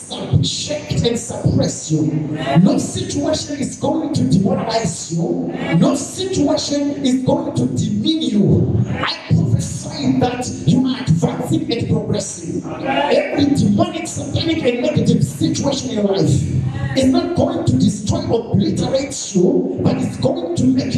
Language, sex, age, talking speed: English, male, 50-69, 135 wpm